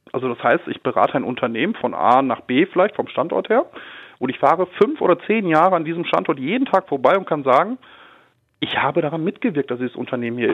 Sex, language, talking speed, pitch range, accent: male, German, 220 wpm, 130-185 Hz, German